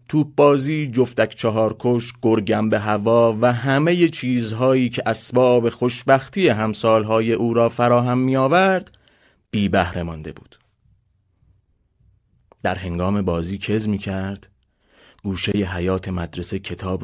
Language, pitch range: Persian, 90-125 Hz